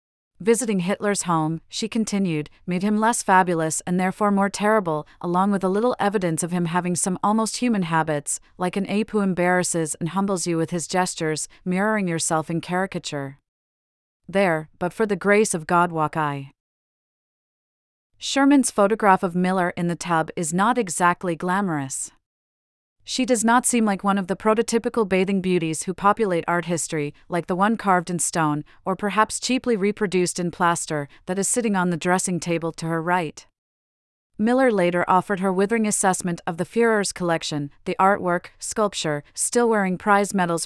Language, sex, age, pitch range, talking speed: English, female, 30-49, 165-205 Hz, 170 wpm